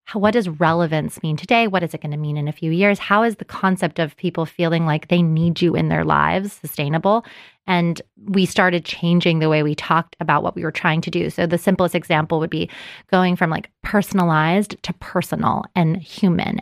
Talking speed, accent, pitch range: 215 wpm, American, 160-195 Hz